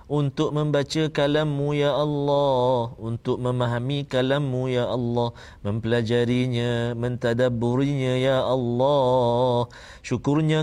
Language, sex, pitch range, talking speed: Malayalam, male, 120-145 Hz, 85 wpm